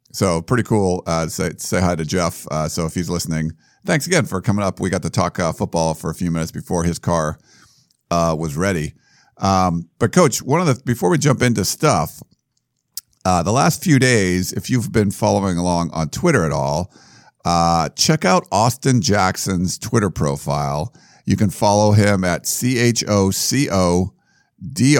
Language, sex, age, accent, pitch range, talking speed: English, male, 50-69, American, 85-110 Hz, 185 wpm